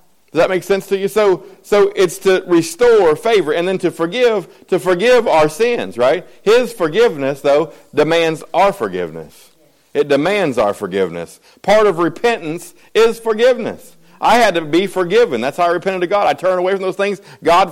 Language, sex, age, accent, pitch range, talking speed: English, male, 50-69, American, 150-195 Hz, 185 wpm